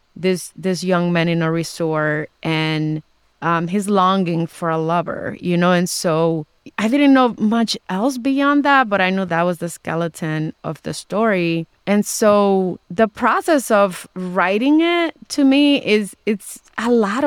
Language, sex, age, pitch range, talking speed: English, female, 20-39, 175-235 Hz, 165 wpm